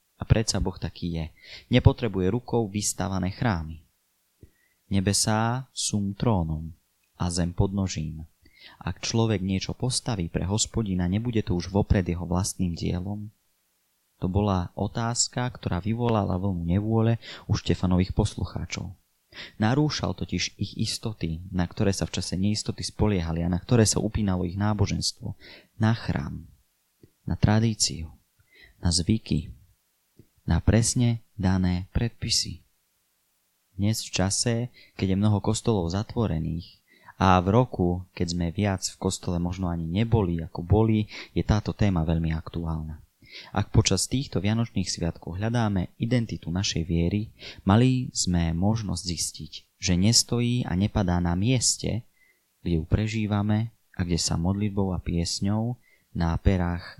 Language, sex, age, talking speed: Slovak, male, 30-49, 130 wpm